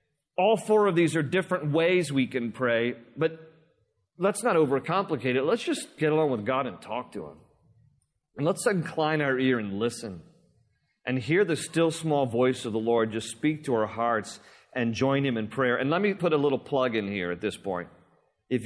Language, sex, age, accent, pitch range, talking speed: English, male, 40-59, American, 135-185 Hz, 205 wpm